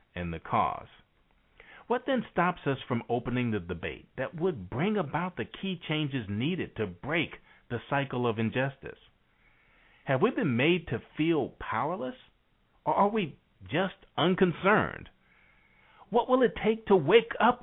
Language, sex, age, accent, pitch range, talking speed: English, male, 50-69, American, 115-180 Hz, 150 wpm